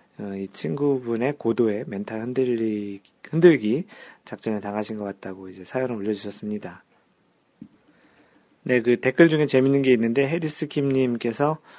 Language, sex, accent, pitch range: Korean, male, native, 110-145 Hz